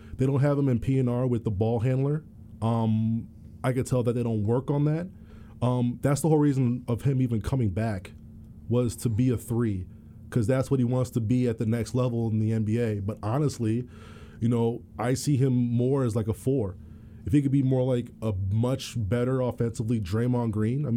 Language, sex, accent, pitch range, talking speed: English, male, American, 110-125 Hz, 210 wpm